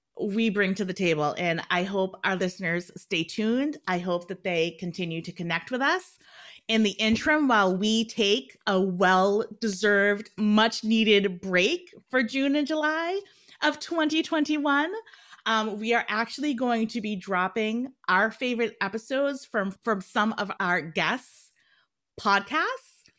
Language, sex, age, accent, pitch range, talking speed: English, female, 30-49, American, 180-235 Hz, 145 wpm